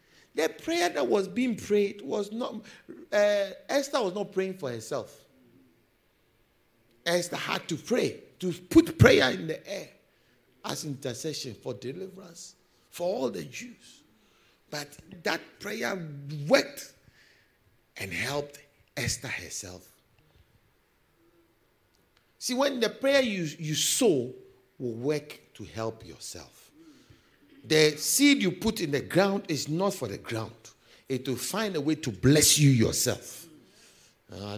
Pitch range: 135-215 Hz